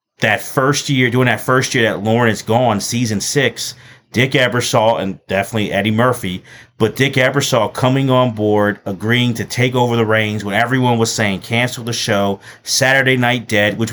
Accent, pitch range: American, 105-125 Hz